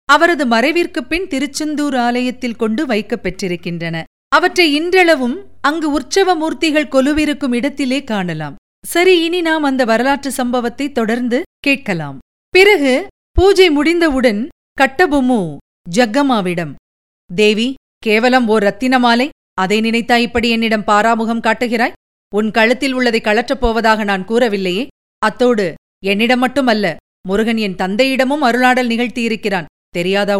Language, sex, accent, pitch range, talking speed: Tamil, female, native, 200-260 Hz, 100 wpm